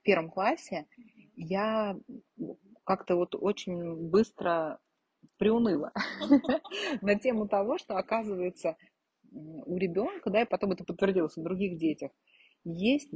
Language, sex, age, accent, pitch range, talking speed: Russian, female, 30-49, native, 175-220 Hz, 115 wpm